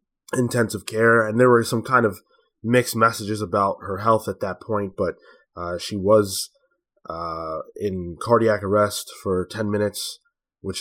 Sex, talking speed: male, 155 wpm